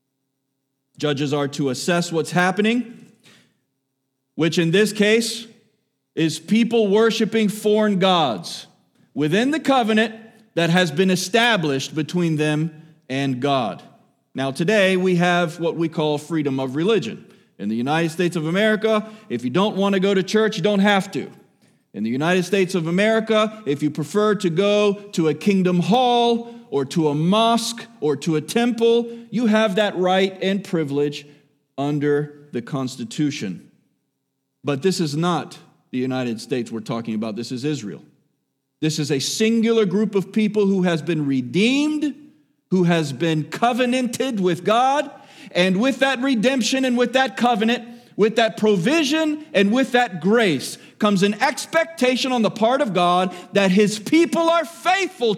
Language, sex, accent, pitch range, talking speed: English, male, American, 150-225 Hz, 155 wpm